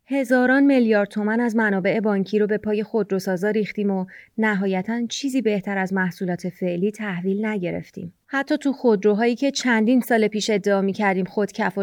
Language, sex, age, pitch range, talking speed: Persian, female, 30-49, 190-225 Hz, 160 wpm